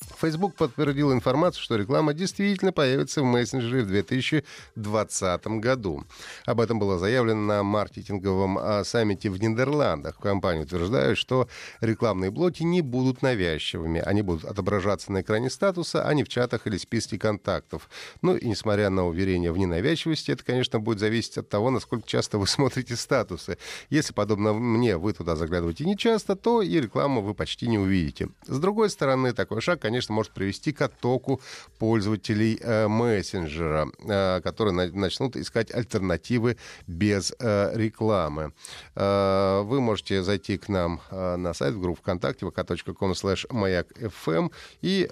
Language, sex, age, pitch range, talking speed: Russian, male, 30-49, 95-130 Hz, 145 wpm